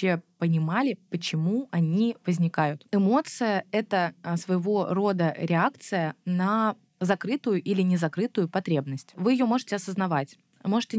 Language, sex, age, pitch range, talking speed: Russian, female, 20-39, 165-200 Hz, 105 wpm